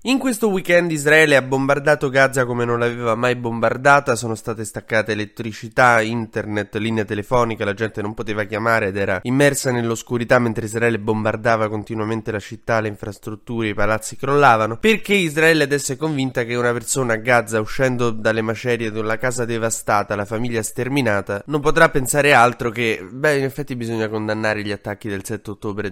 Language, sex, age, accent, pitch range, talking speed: Italian, male, 20-39, native, 110-135 Hz, 170 wpm